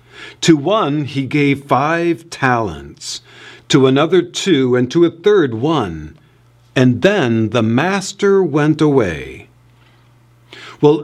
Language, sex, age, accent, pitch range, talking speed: English, male, 50-69, American, 120-170 Hz, 115 wpm